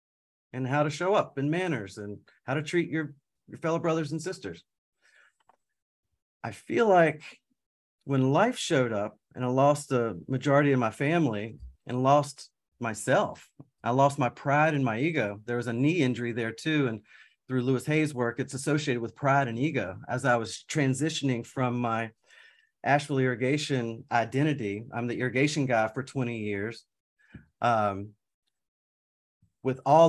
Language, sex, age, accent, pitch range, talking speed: English, male, 40-59, American, 115-145 Hz, 155 wpm